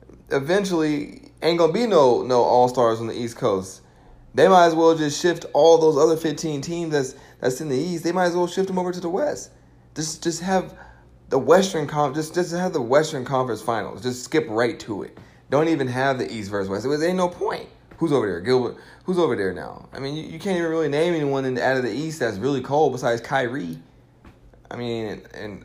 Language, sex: English, male